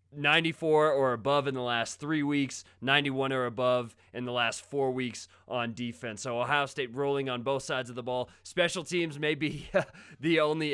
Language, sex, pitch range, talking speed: English, male, 120-150 Hz, 190 wpm